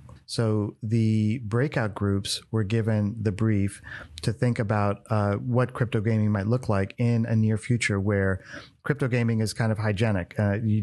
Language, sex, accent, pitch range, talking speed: English, male, American, 100-115 Hz, 170 wpm